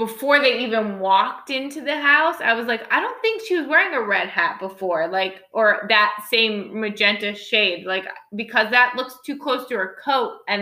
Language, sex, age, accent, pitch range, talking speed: English, female, 20-39, American, 185-225 Hz, 205 wpm